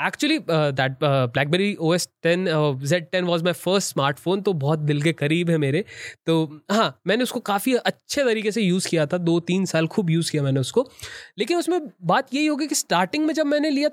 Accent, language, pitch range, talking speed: native, Hindi, 160-235 Hz, 215 wpm